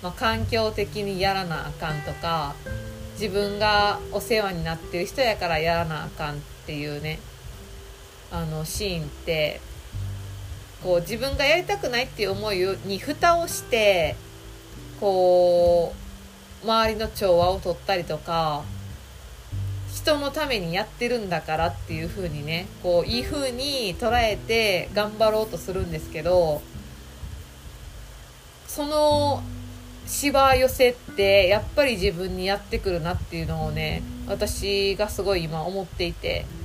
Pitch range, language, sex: 150-220 Hz, Japanese, female